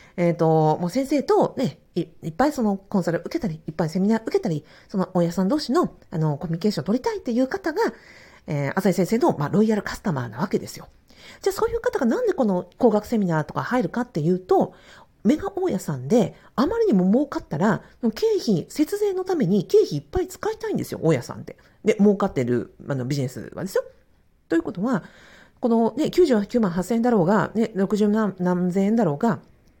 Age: 40-59